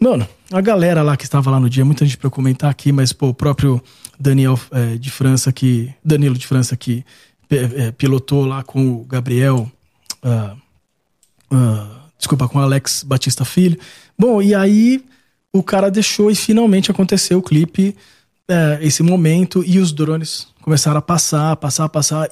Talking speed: 175 wpm